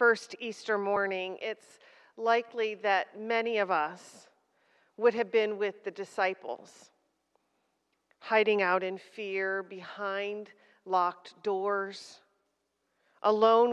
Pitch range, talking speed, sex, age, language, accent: 195-220 Hz, 100 wpm, female, 40-59, English, American